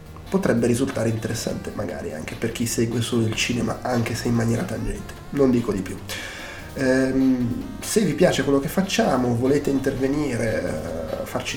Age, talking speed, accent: 30-49, 150 wpm, native